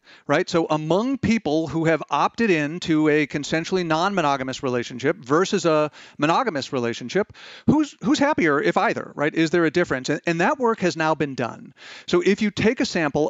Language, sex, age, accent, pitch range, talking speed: English, male, 40-59, American, 140-180 Hz, 180 wpm